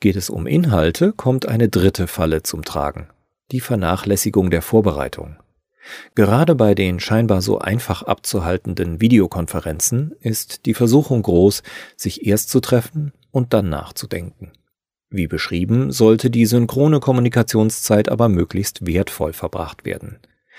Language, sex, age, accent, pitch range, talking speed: German, male, 40-59, German, 95-120 Hz, 130 wpm